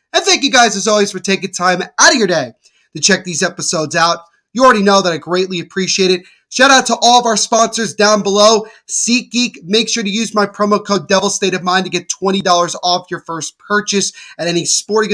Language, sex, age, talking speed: English, male, 30-49, 225 wpm